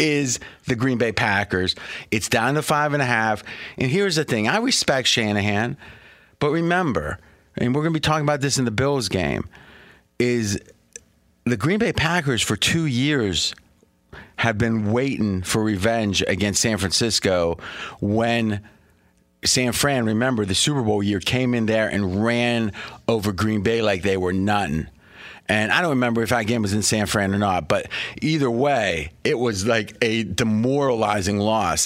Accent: American